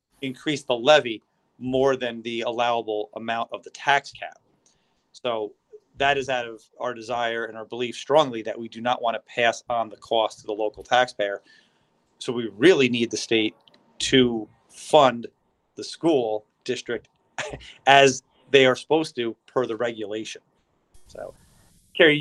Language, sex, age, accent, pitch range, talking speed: English, male, 30-49, American, 115-140 Hz, 155 wpm